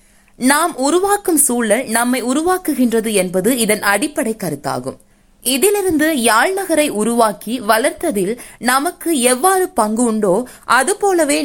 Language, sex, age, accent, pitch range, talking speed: Tamil, female, 20-39, native, 230-325 Hz, 100 wpm